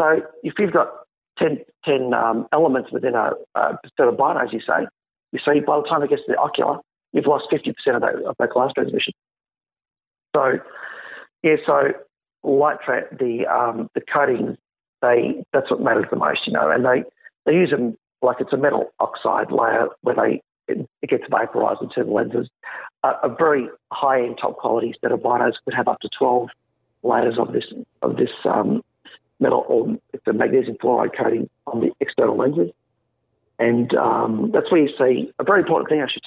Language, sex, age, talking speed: English, male, 40-59, 190 wpm